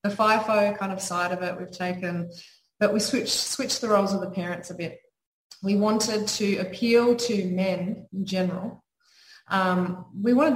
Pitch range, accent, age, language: 180-205 Hz, Australian, 20-39, English